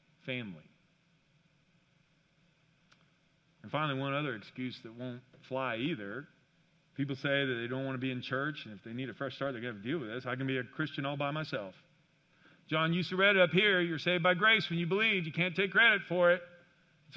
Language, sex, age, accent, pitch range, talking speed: English, male, 50-69, American, 140-175 Hz, 225 wpm